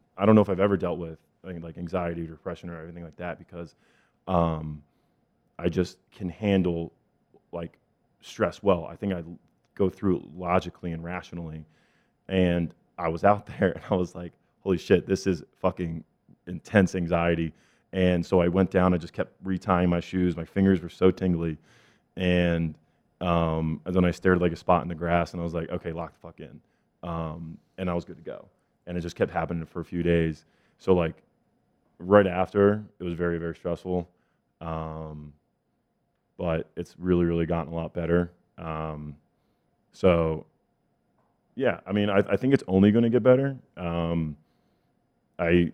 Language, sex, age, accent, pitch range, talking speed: English, male, 20-39, American, 85-95 Hz, 185 wpm